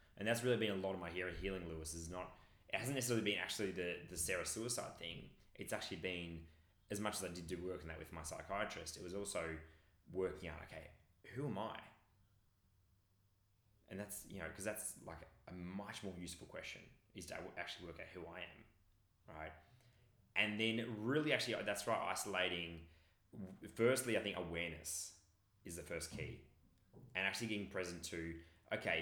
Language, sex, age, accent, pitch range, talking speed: English, male, 20-39, Australian, 85-110 Hz, 180 wpm